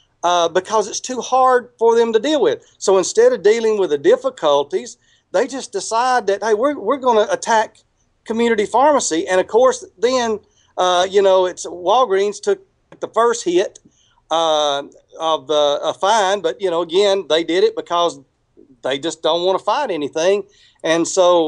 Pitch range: 170-245 Hz